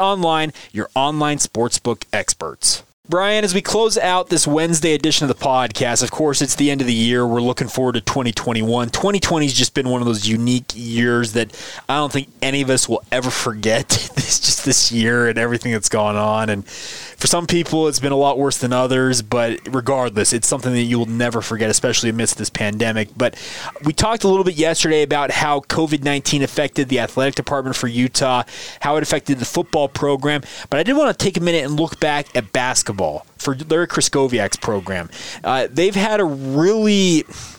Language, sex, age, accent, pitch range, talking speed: English, male, 20-39, American, 125-160 Hz, 200 wpm